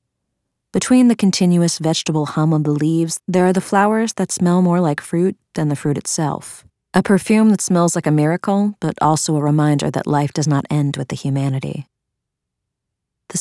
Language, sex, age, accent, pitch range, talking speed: English, female, 30-49, American, 140-170 Hz, 185 wpm